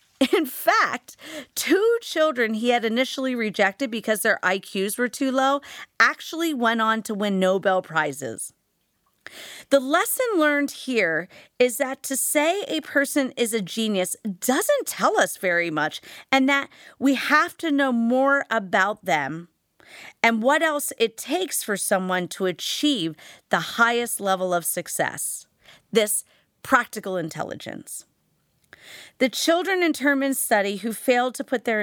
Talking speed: 140 wpm